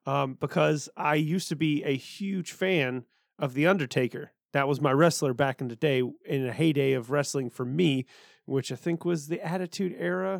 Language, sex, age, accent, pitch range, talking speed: English, male, 30-49, American, 135-170 Hz, 195 wpm